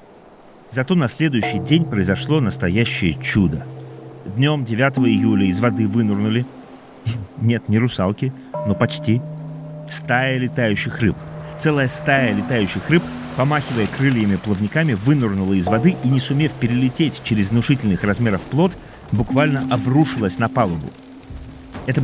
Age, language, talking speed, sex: 40-59, Russian, 120 wpm, male